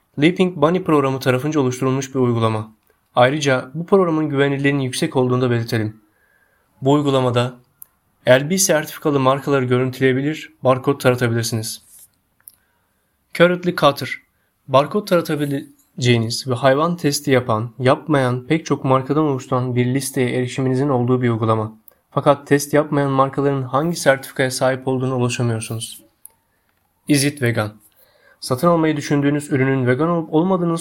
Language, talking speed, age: Turkish, 115 wpm, 30-49